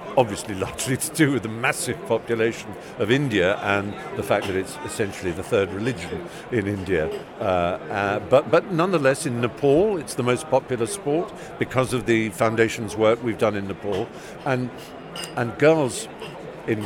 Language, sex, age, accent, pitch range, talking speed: English, male, 50-69, British, 105-130 Hz, 165 wpm